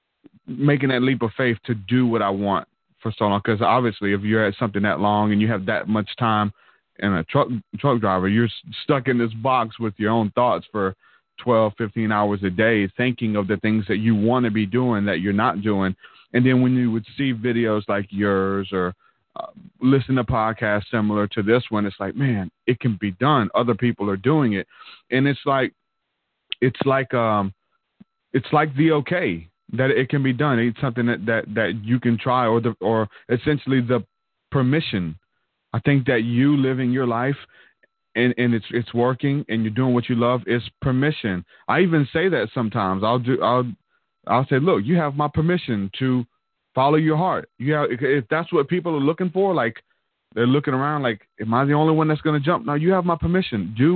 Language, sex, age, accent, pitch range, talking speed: English, male, 30-49, American, 110-140 Hz, 210 wpm